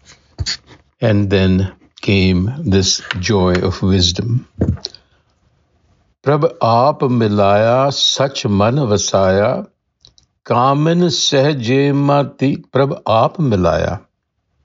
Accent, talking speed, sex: Indian, 60 wpm, male